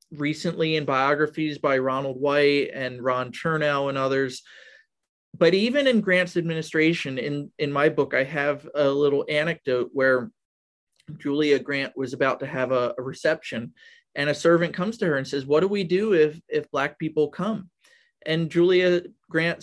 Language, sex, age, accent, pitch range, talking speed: English, male, 30-49, American, 135-165 Hz, 170 wpm